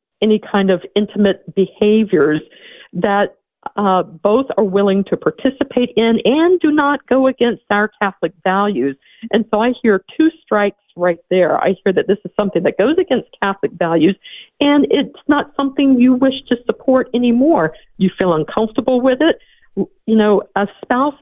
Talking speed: 165 wpm